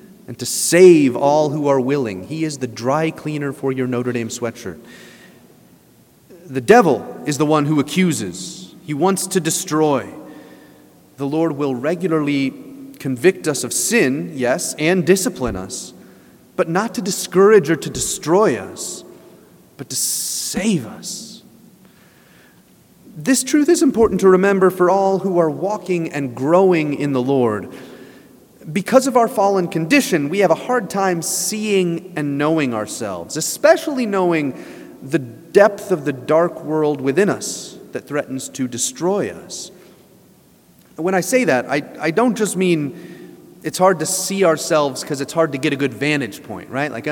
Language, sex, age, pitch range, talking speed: English, male, 30-49, 140-190 Hz, 155 wpm